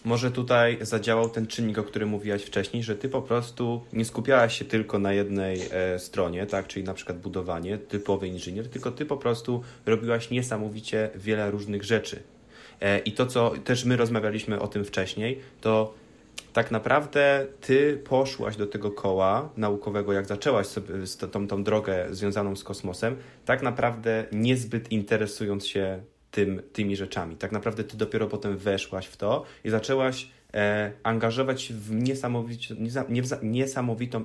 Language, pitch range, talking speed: Polish, 100-120 Hz, 155 wpm